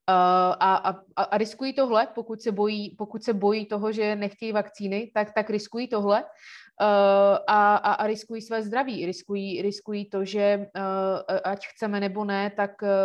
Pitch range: 185-205 Hz